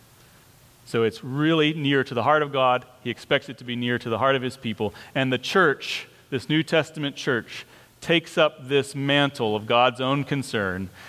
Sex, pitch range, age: male, 110-140 Hz, 40-59